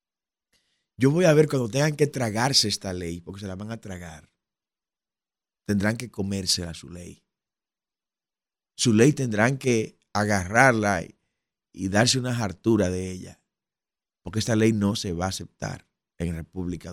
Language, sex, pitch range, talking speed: Spanish, male, 100-150 Hz, 150 wpm